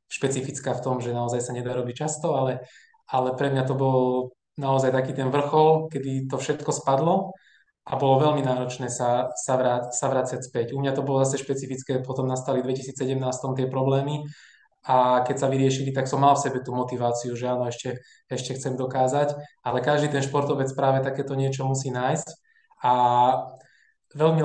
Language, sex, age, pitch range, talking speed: Slovak, male, 20-39, 130-145 Hz, 175 wpm